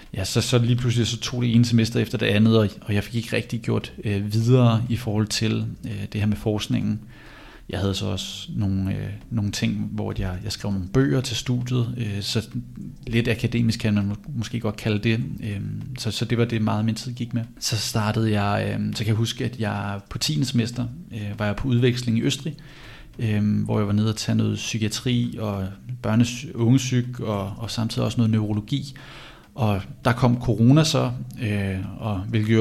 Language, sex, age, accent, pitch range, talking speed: Danish, male, 30-49, native, 105-120 Hz, 210 wpm